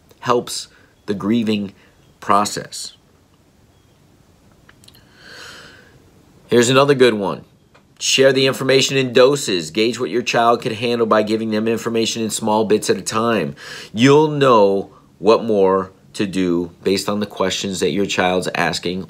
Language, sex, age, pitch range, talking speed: English, male, 50-69, 95-115 Hz, 135 wpm